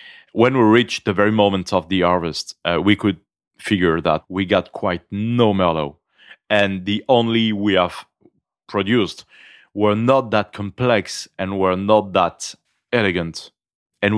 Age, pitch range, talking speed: 30-49, 90-110 Hz, 150 wpm